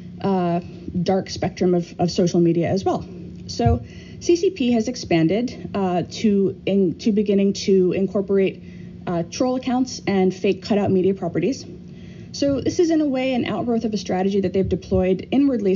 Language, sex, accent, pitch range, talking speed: English, female, American, 180-215 Hz, 165 wpm